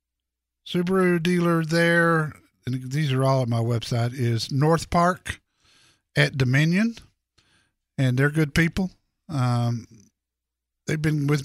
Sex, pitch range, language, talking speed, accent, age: male, 120-150 Hz, English, 120 wpm, American, 50-69